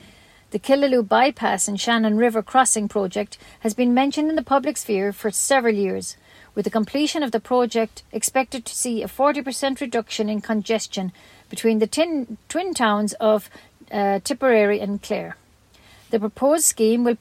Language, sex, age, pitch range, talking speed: English, female, 50-69, 205-250 Hz, 160 wpm